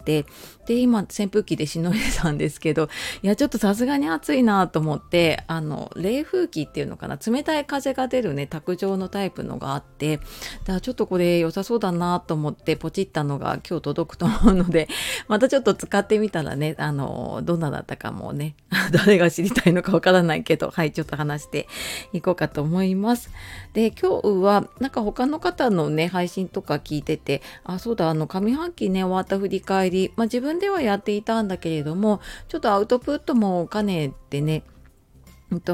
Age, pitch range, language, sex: 30-49, 160-230 Hz, Japanese, female